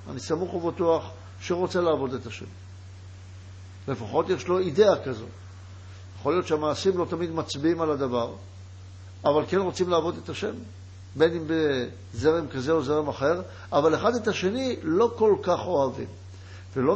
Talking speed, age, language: 150 wpm, 60-79, Hebrew